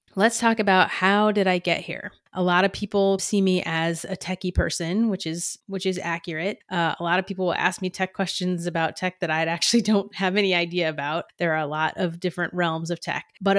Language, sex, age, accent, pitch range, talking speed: English, female, 30-49, American, 165-195 Hz, 235 wpm